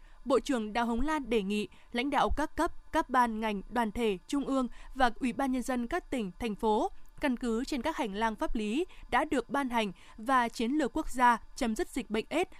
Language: Vietnamese